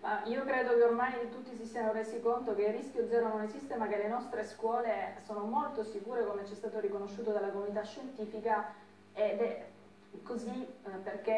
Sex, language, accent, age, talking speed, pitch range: female, Italian, native, 20-39, 185 wpm, 205-255 Hz